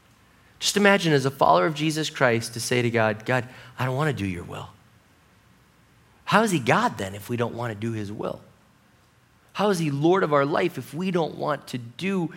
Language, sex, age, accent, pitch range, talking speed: English, male, 30-49, American, 165-220 Hz, 215 wpm